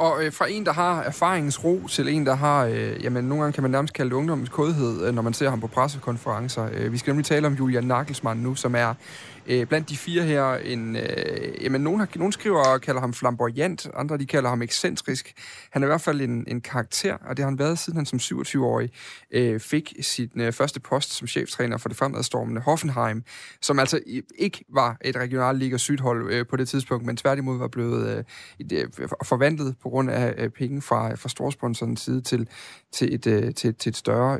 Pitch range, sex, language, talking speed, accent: 125-155 Hz, male, Danish, 220 wpm, native